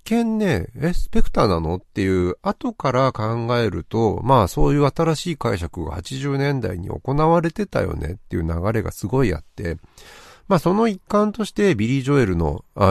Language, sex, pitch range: Japanese, male, 85-140 Hz